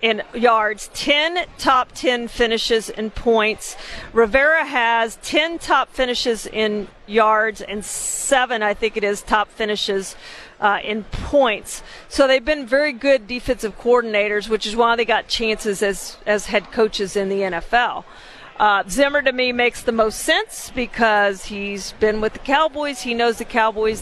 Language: English